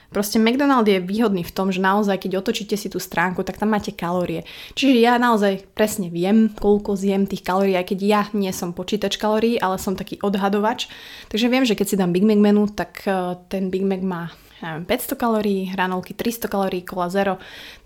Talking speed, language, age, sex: 200 wpm, Slovak, 20-39, female